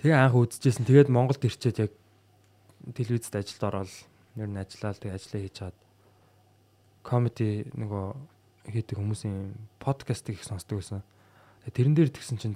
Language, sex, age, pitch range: Korean, male, 20-39, 100-125 Hz